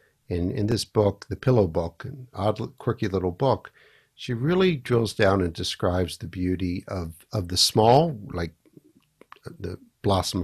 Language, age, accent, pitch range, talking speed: English, 60-79, American, 85-110 Hz, 160 wpm